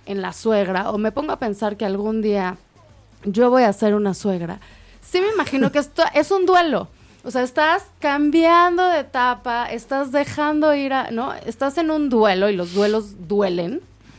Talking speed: 185 wpm